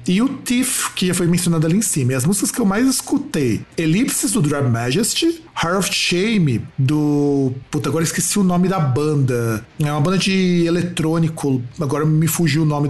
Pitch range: 145-200 Hz